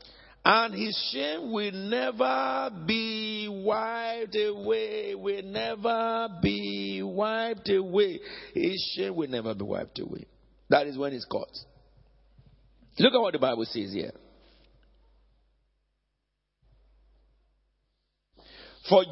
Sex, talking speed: male, 105 wpm